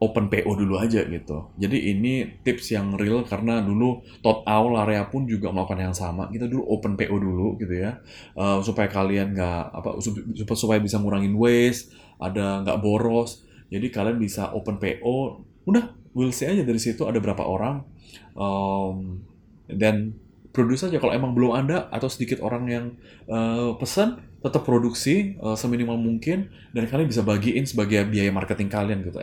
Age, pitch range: 20-39, 100-120 Hz